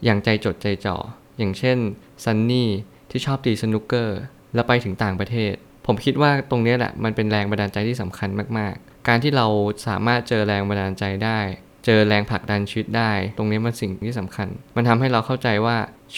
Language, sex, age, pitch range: Thai, male, 20-39, 100-125 Hz